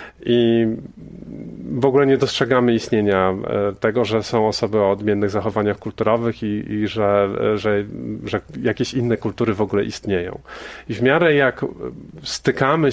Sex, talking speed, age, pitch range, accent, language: male, 140 wpm, 40-59, 100-120 Hz, native, Polish